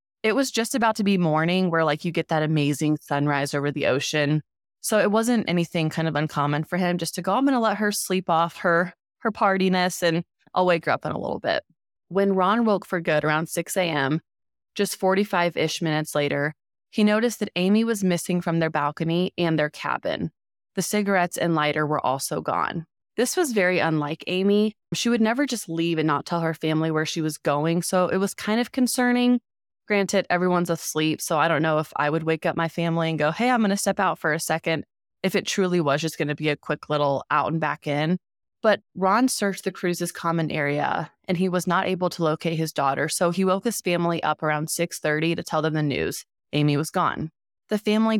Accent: American